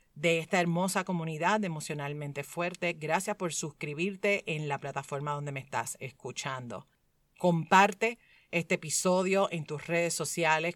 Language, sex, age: Spanish, female, 40-59